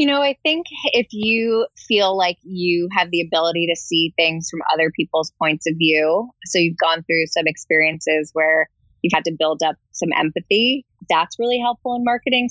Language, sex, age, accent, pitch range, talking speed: English, female, 20-39, American, 160-200 Hz, 190 wpm